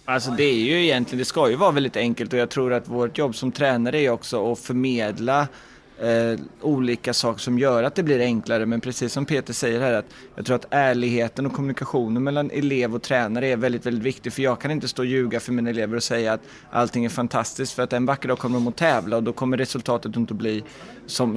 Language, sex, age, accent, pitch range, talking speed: Swedish, male, 20-39, native, 115-130 Hz, 240 wpm